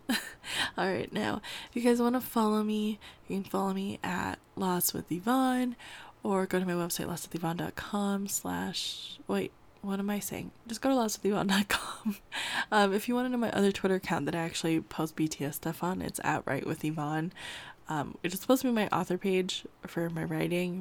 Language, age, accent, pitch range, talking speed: English, 10-29, American, 180-230 Hz, 185 wpm